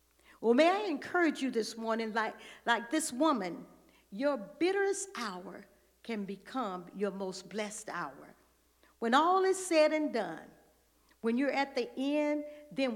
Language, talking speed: English, 150 wpm